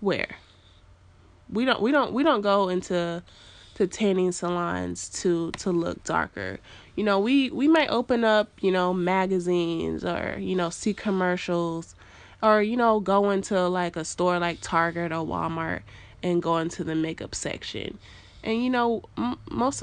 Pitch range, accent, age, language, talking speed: 165-215 Hz, American, 20-39, English, 160 wpm